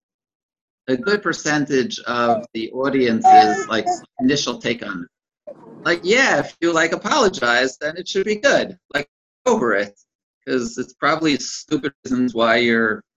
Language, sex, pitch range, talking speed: English, male, 115-150 Hz, 150 wpm